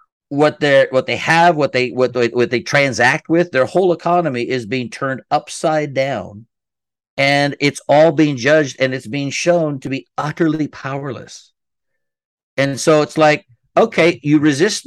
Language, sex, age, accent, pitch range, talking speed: English, male, 50-69, American, 140-185 Hz, 160 wpm